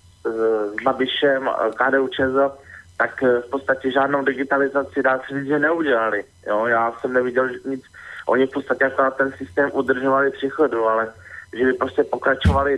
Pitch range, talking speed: 125-140 Hz, 155 wpm